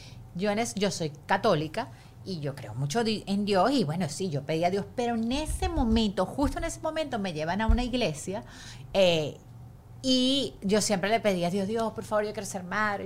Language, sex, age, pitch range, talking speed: Spanish, female, 30-49, 150-220 Hz, 200 wpm